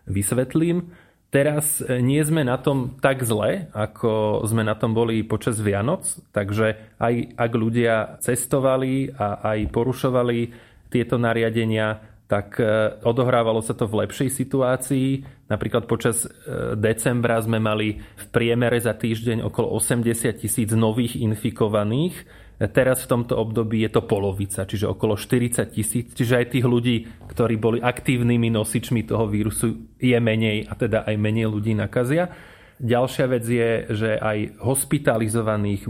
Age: 20-39